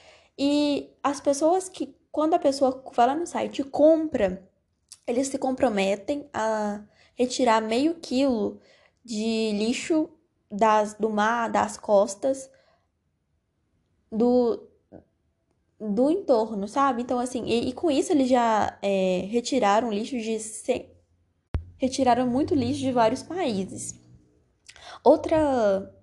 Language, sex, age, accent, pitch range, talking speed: Portuguese, female, 10-29, Brazilian, 200-265 Hz, 110 wpm